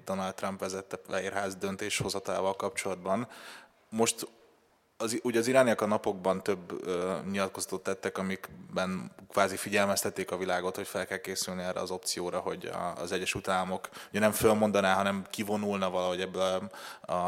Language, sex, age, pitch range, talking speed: Hungarian, male, 20-39, 95-100 Hz, 140 wpm